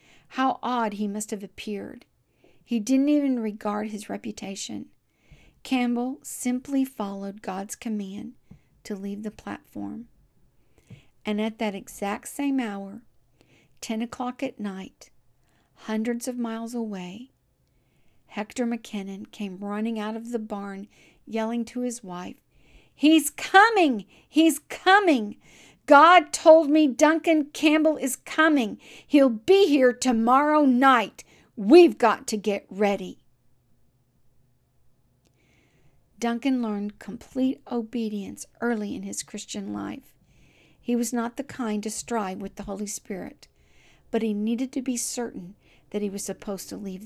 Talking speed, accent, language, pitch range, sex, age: 130 wpm, American, English, 205-255 Hz, female, 50-69